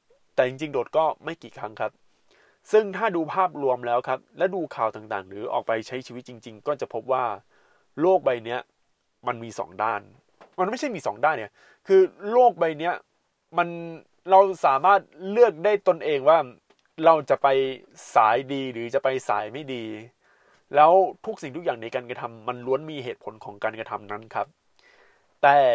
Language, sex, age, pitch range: Thai, male, 20-39, 130-190 Hz